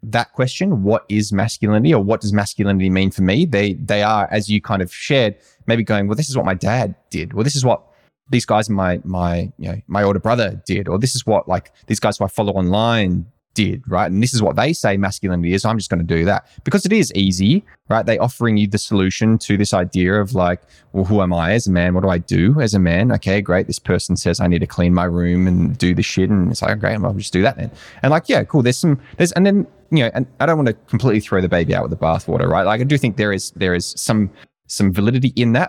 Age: 20-39